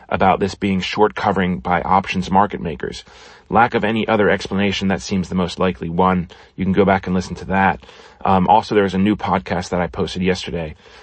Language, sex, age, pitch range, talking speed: English, male, 30-49, 90-105 Hz, 210 wpm